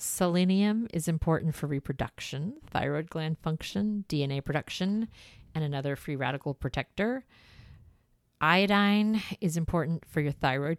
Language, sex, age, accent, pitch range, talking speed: English, female, 40-59, American, 140-170 Hz, 115 wpm